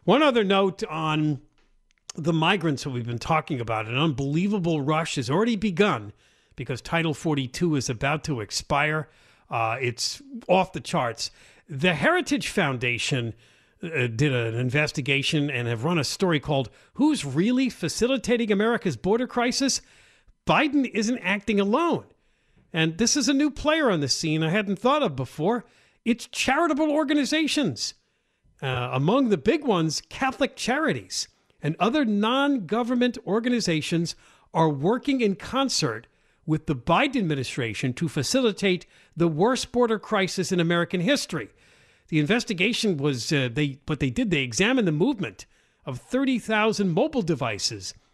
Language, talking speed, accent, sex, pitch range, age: English, 140 wpm, American, male, 150-235 Hz, 50-69